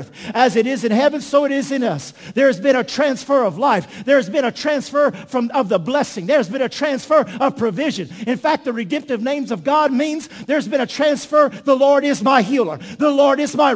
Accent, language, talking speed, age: American, English, 225 wpm, 50-69